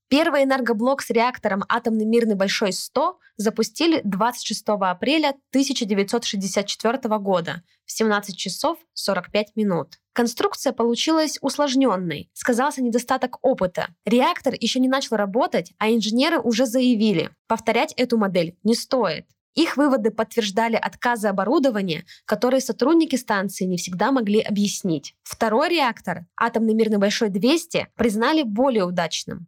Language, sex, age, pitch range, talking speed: Russian, female, 20-39, 205-255 Hz, 120 wpm